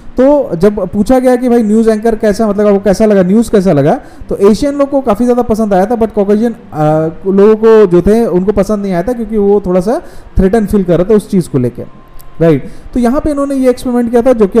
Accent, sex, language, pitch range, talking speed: native, male, Hindi, 170-220 Hz, 240 wpm